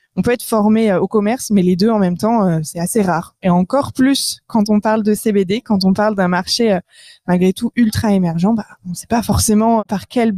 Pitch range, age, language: 190-230 Hz, 20-39, French